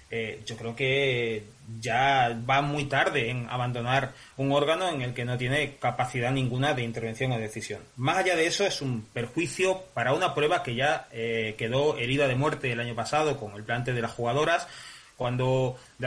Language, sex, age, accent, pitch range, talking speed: Spanish, male, 30-49, Spanish, 125-150 Hz, 190 wpm